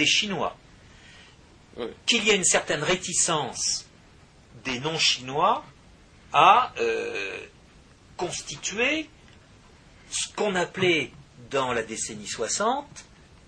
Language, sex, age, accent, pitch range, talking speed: French, male, 50-69, French, 135-190 Hz, 90 wpm